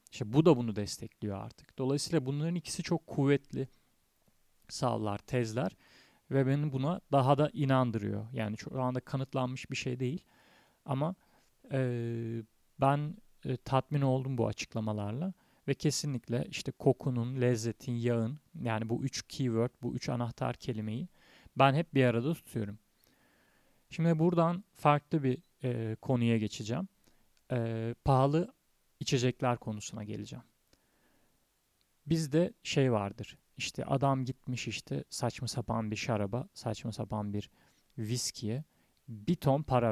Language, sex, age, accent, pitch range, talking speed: Turkish, male, 40-59, native, 115-145 Hz, 125 wpm